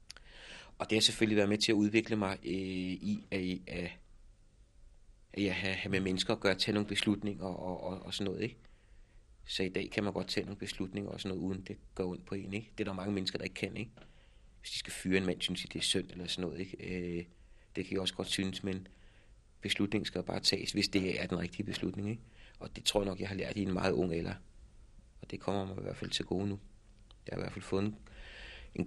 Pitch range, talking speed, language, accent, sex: 95-110 Hz, 255 wpm, Danish, native, male